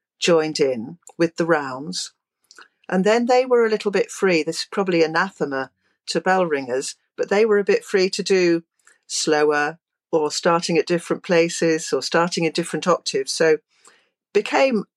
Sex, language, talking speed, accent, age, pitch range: female, English, 165 wpm, British, 50-69, 160-210 Hz